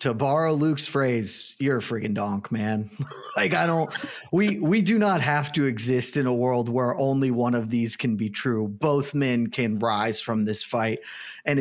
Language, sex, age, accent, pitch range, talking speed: English, male, 30-49, American, 125-165 Hz, 195 wpm